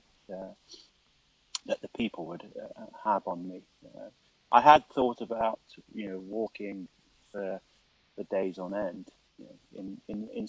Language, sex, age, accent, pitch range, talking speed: English, male, 30-49, British, 100-125 Hz, 160 wpm